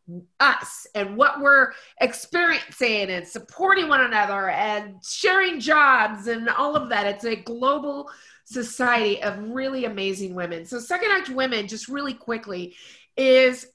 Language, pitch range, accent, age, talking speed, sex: English, 215-265 Hz, American, 30-49, 140 wpm, female